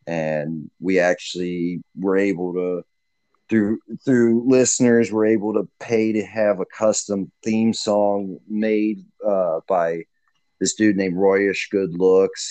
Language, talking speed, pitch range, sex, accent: English, 135 wpm, 95-130 Hz, male, American